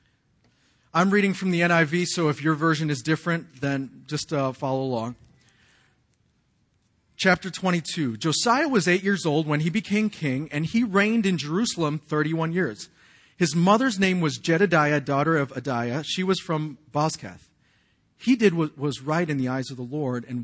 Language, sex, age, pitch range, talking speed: English, male, 40-59, 140-190 Hz, 170 wpm